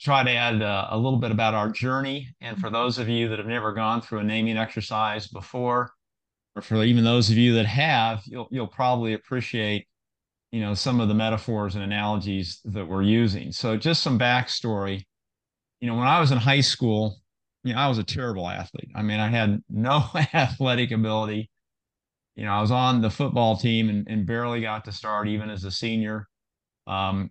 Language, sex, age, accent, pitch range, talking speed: English, male, 30-49, American, 110-135 Hz, 200 wpm